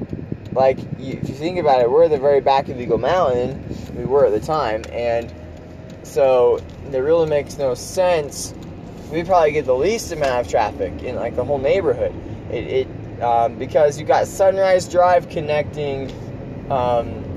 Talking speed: 170 wpm